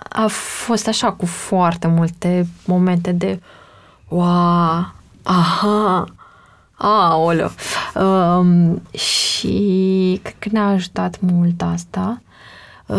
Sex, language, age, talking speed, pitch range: female, Romanian, 20-39, 95 wpm, 180-210 Hz